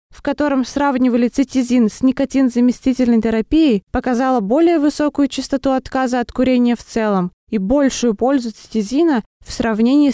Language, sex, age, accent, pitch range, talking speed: Russian, female, 20-39, native, 235-275 Hz, 130 wpm